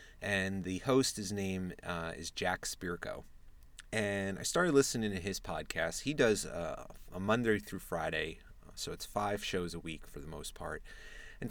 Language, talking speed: English, 175 wpm